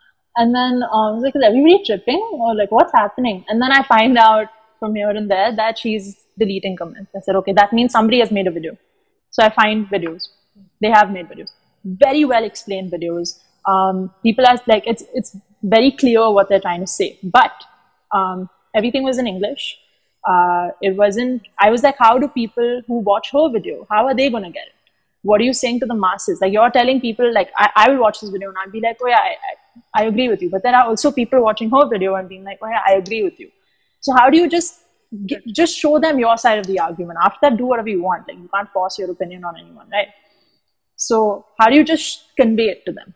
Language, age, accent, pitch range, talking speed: English, 20-39, Indian, 195-250 Hz, 240 wpm